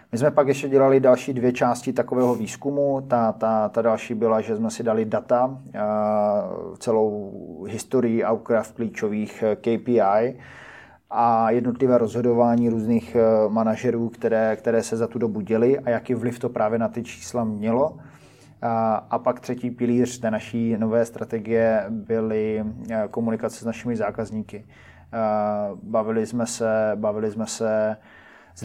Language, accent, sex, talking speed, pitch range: Czech, native, male, 135 wpm, 110-120 Hz